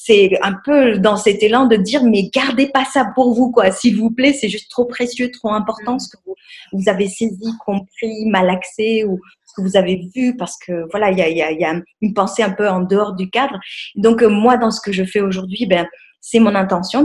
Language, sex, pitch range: French, female, 185-230 Hz